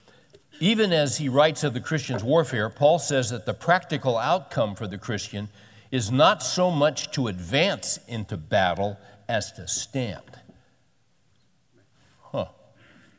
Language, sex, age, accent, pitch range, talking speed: English, male, 60-79, American, 105-135 Hz, 130 wpm